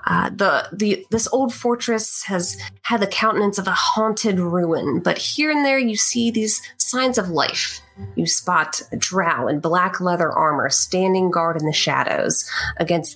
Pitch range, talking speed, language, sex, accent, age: 155-205 Hz, 175 wpm, English, female, American, 30-49